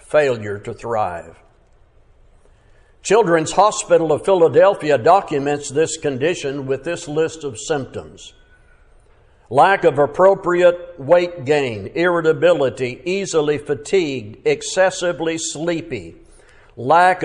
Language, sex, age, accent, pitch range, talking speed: English, male, 60-79, American, 140-180 Hz, 90 wpm